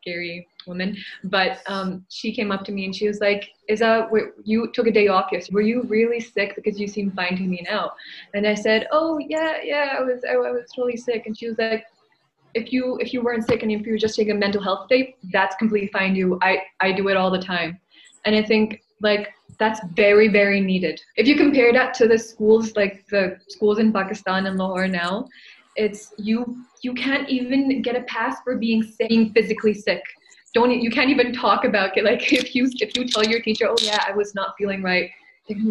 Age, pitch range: 20-39, 200-235 Hz